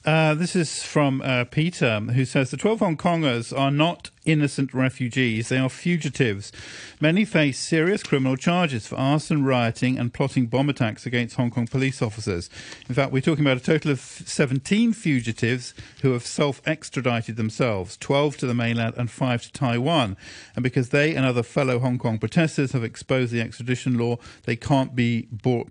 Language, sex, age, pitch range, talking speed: English, male, 50-69, 115-140 Hz, 175 wpm